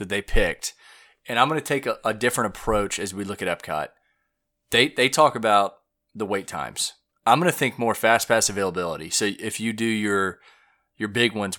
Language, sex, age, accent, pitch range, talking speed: English, male, 30-49, American, 100-115 Hz, 195 wpm